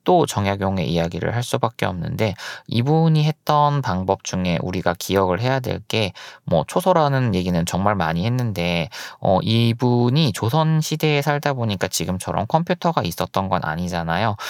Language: Korean